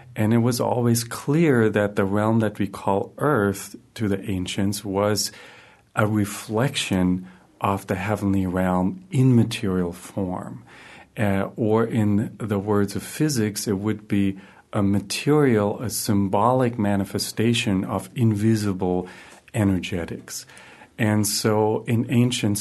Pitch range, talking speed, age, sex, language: 100-115 Hz, 125 wpm, 40-59, male, English